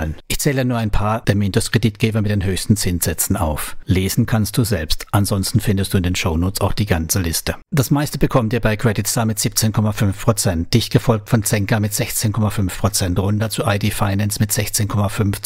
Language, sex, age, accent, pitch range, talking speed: German, male, 60-79, German, 100-120 Hz, 185 wpm